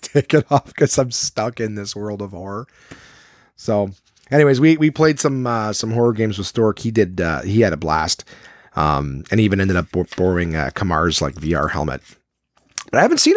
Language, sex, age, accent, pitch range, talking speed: English, male, 30-49, American, 80-125 Hz, 195 wpm